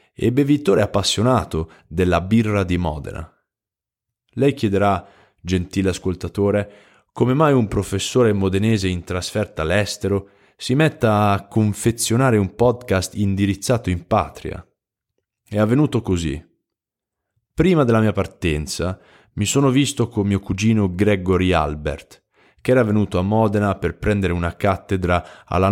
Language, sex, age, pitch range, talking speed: Italian, male, 20-39, 90-110 Hz, 125 wpm